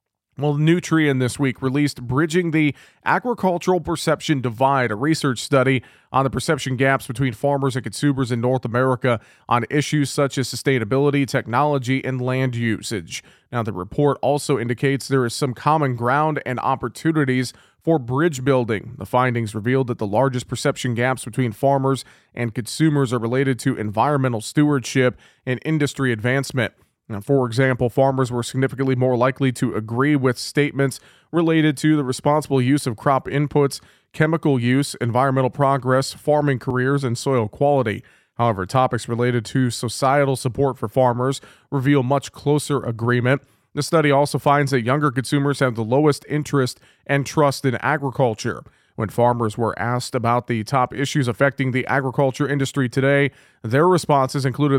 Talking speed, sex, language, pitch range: 150 wpm, male, English, 120-140 Hz